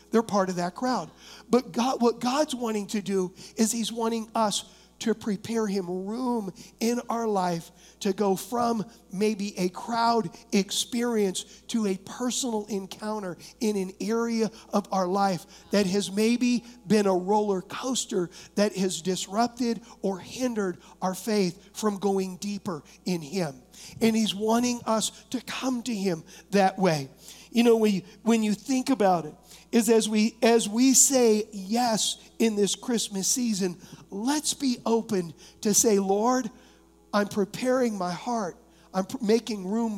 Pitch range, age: 190-230 Hz, 50-69